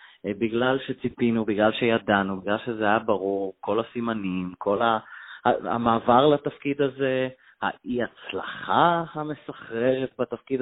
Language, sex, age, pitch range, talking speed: Hebrew, male, 30-49, 105-145 Hz, 100 wpm